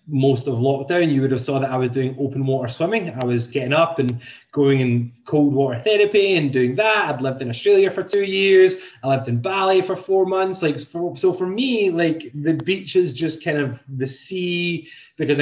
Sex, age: male, 20-39